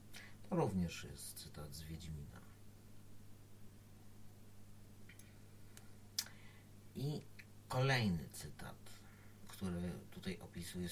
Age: 50-69